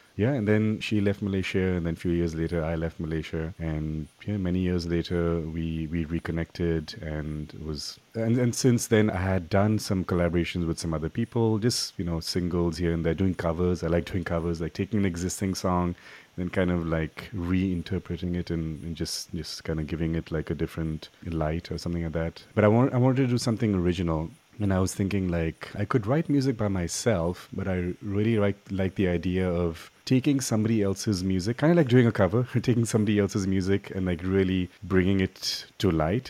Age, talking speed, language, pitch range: 30-49, 210 wpm, English, 80-100 Hz